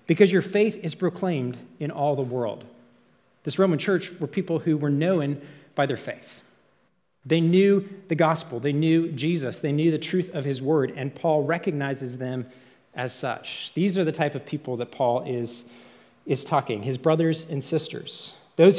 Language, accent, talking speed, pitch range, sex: English, American, 180 wpm, 140-180 Hz, male